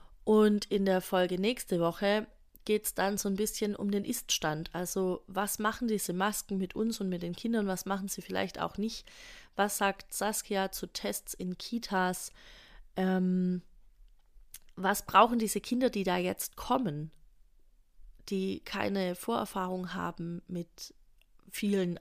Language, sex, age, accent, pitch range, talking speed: German, female, 30-49, German, 175-210 Hz, 145 wpm